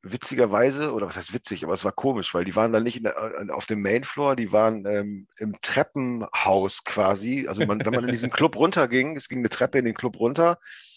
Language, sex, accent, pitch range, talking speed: German, male, German, 105-130 Hz, 230 wpm